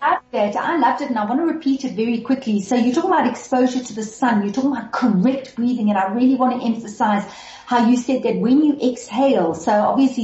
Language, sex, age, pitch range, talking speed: English, female, 40-59, 210-250 Hz, 235 wpm